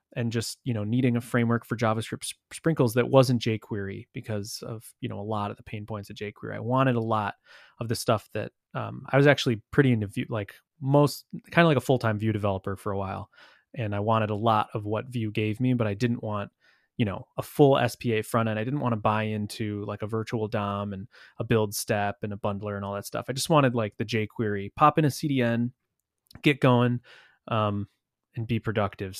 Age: 20-39